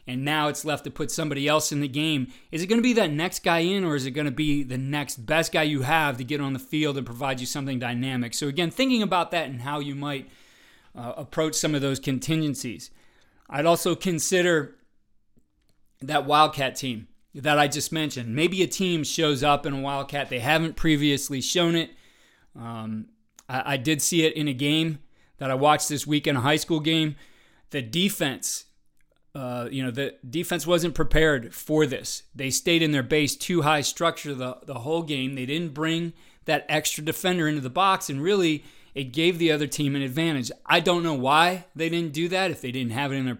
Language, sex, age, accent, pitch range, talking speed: English, male, 30-49, American, 135-160 Hz, 215 wpm